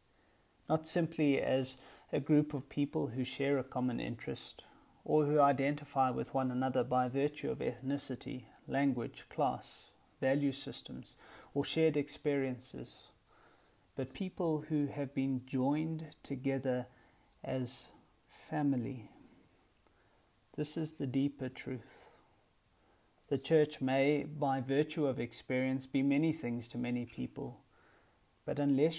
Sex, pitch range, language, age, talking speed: male, 125-150 Hz, English, 30-49, 120 wpm